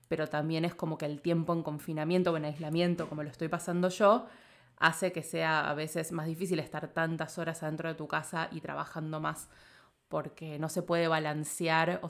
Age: 20-39